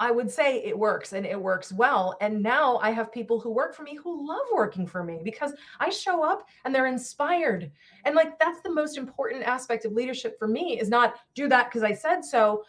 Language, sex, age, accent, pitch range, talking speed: English, female, 20-39, American, 210-275 Hz, 230 wpm